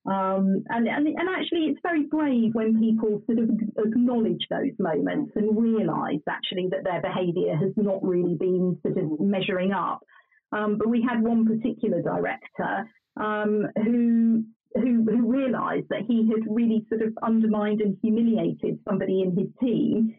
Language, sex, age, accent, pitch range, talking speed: English, female, 40-59, British, 195-230 Hz, 160 wpm